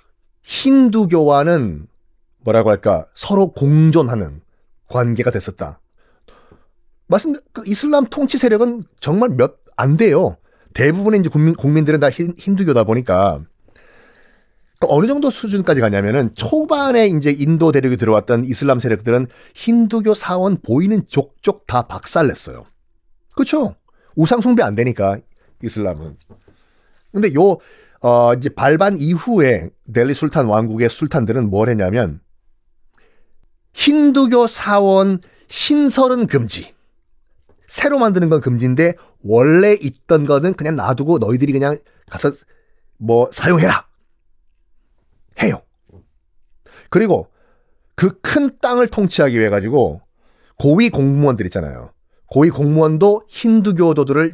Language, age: Korean, 40-59